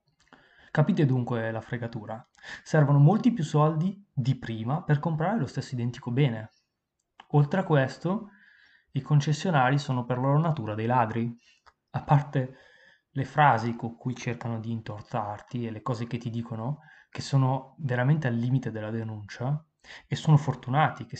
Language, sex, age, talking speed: Italian, male, 20-39, 150 wpm